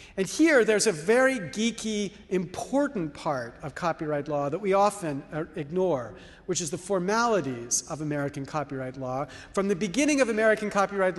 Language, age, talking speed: English, 40-59, 155 wpm